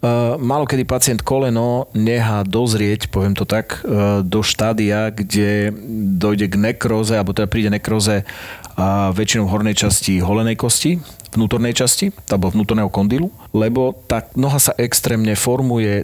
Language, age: Slovak, 40-59